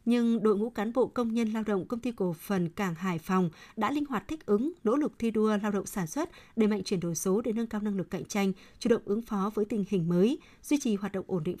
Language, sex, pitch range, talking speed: Vietnamese, female, 195-235 Hz, 285 wpm